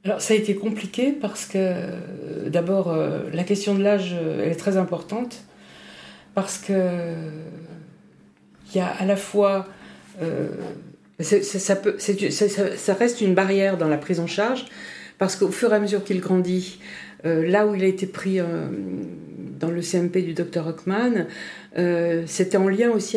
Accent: French